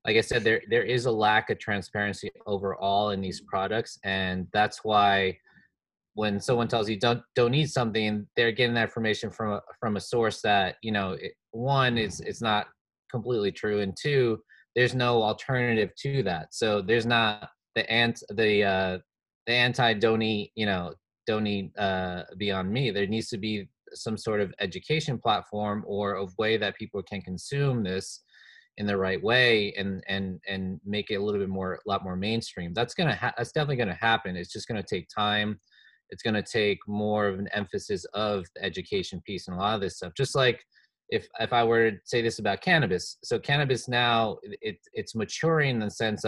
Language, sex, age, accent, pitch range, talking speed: English, male, 20-39, American, 100-120 Hz, 195 wpm